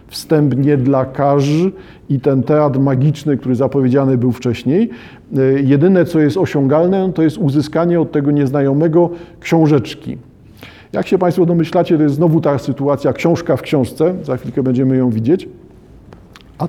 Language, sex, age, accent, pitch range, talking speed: Polish, male, 50-69, native, 135-170 Hz, 145 wpm